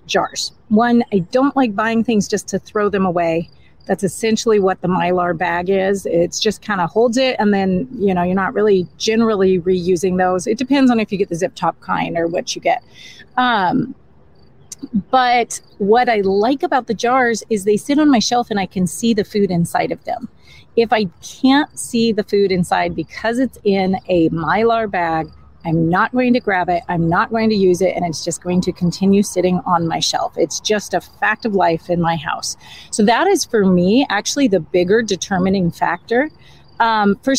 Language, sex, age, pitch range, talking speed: English, female, 30-49, 180-230 Hz, 205 wpm